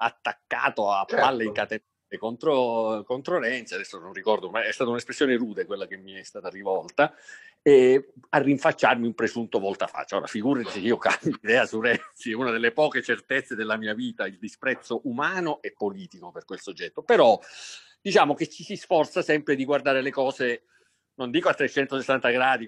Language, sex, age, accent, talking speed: Italian, male, 50-69, native, 180 wpm